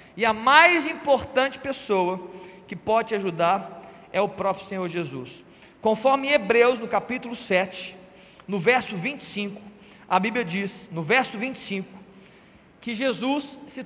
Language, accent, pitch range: Portuguese, Brazilian, 200-285 Hz